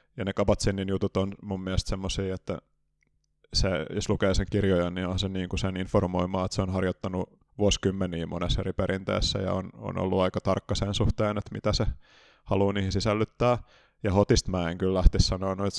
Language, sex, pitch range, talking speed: Finnish, male, 90-100 Hz, 180 wpm